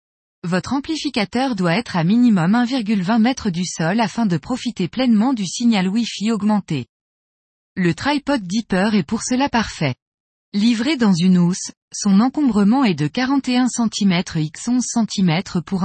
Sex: female